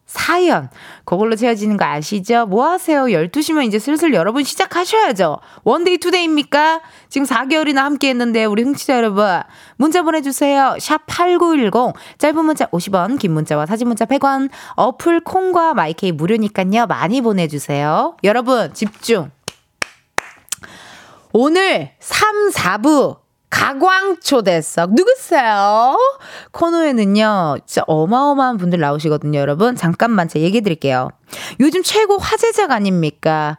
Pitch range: 210-310 Hz